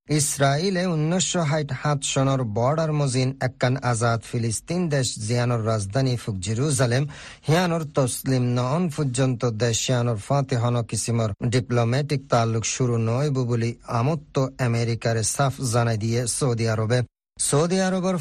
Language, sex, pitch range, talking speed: Bengali, male, 115-140 Hz, 120 wpm